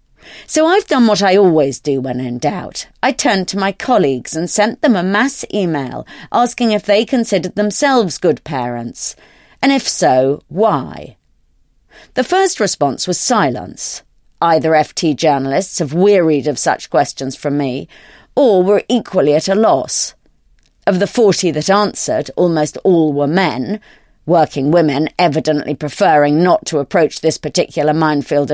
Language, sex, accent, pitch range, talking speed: English, female, British, 150-225 Hz, 150 wpm